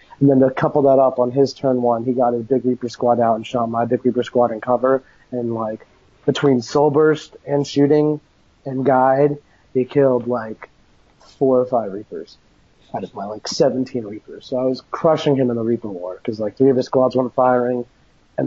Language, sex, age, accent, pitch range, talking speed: English, male, 30-49, American, 125-145 Hz, 210 wpm